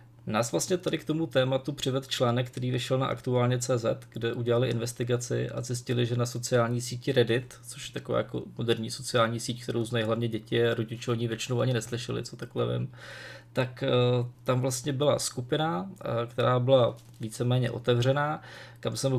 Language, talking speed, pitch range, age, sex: Czech, 165 wpm, 115-125 Hz, 20-39, male